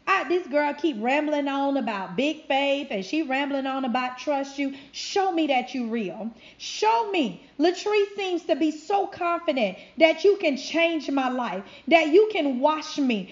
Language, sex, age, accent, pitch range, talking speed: English, female, 40-59, American, 280-360 Hz, 175 wpm